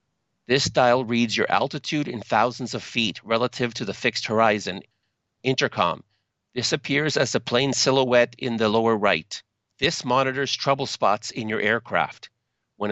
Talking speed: 155 wpm